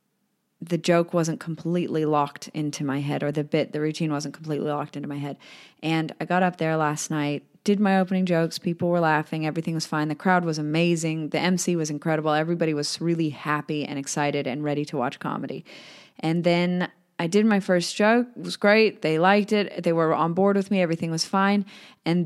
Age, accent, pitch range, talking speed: 30-49, American, 155-195 Hz, 210 wpm